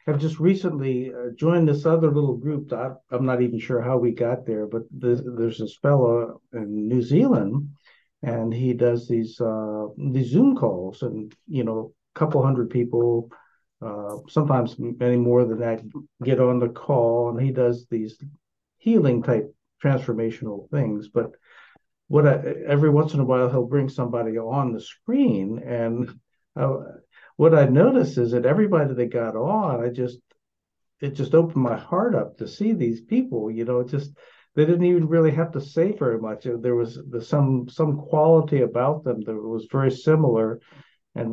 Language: English